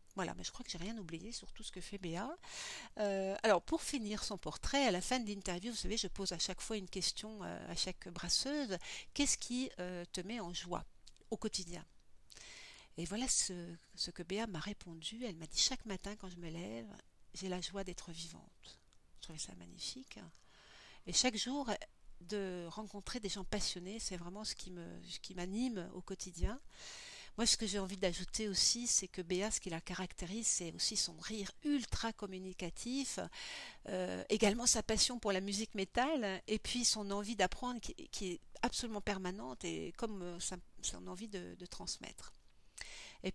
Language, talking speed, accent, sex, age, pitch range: French, 190 wpm, French, female, 60-79, 180-225 Hz